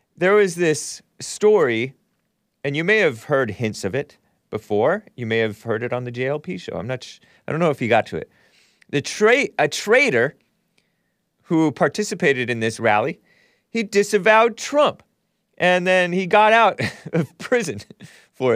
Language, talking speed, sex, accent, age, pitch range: English, 170 wpm, male, American, 30-49, 115-185 Hz